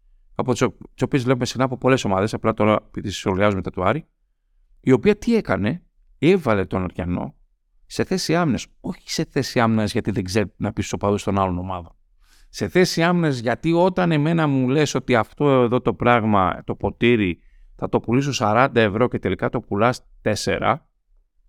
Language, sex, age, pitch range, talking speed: Greek, male, 50-69, 100-140 Hz, 175 wpm